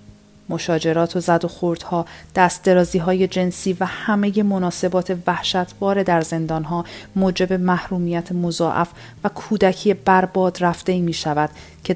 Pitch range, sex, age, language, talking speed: 160-185 Hz, female, 40-59, Persian, 130 wpm